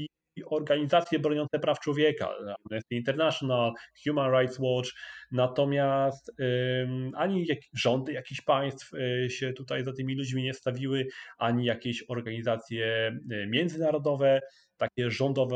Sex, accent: male, native